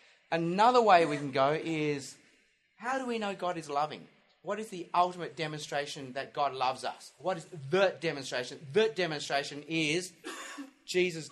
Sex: male